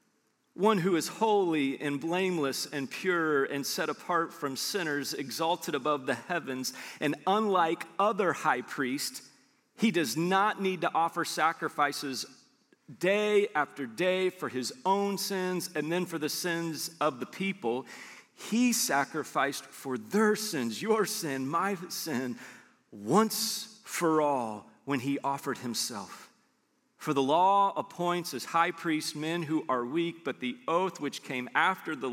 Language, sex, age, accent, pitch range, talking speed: English, male, 40-59, American, 145-195 Hz, 145 wpm